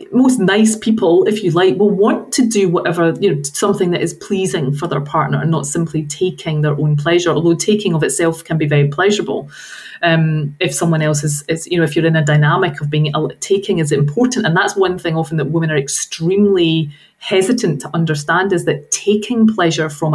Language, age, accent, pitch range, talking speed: English, 30-49, British, 150-185 Hz, 210 wpm